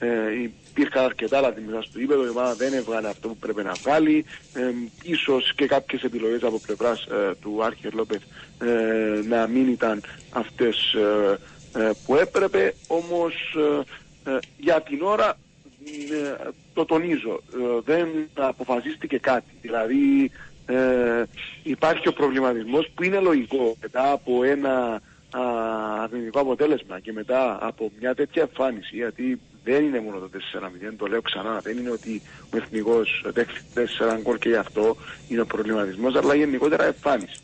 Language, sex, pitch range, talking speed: Greek, male, 115-155 Hz, 145 wpm